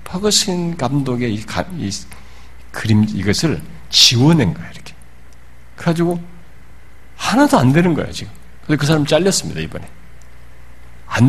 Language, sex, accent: Korean, male, native